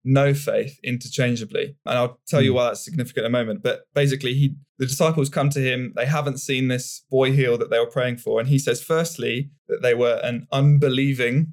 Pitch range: 120-145 Hz